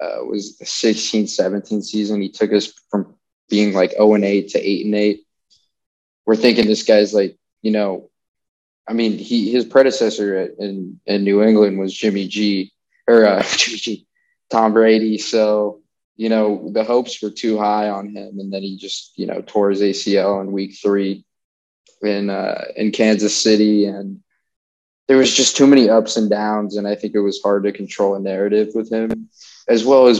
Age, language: 20-39, English